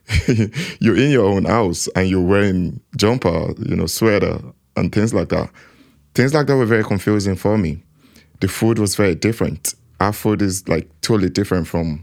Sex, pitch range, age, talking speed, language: male, 90-110 Hz, 20-39, 180 wpm, English